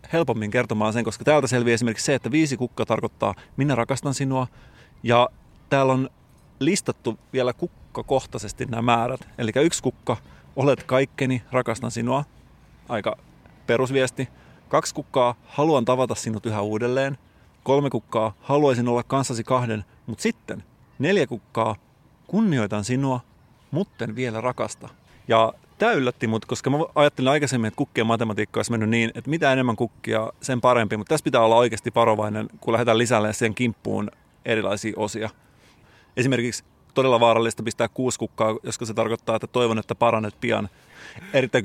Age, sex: 30-49, male